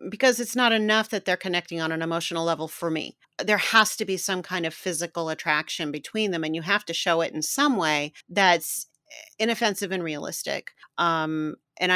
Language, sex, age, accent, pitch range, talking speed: English, female, 40-59, American, 165-200 Hz, 195 wpm